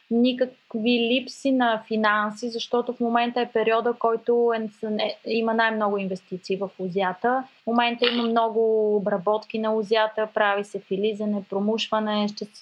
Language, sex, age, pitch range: Bulgarian, female, 20-39, 205-235 Hz